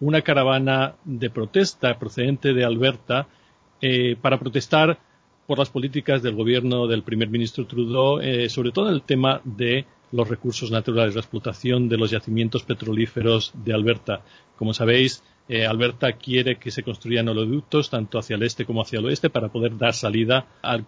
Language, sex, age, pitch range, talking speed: Spanish, male, 40-59, 115-135 Hz, 165 wpm